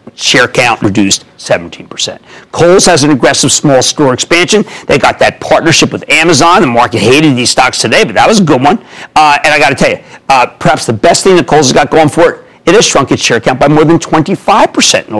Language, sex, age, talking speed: English, male, 50-69, 235 wpm